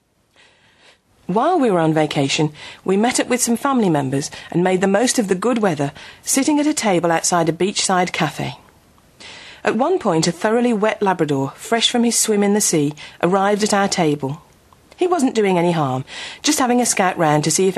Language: English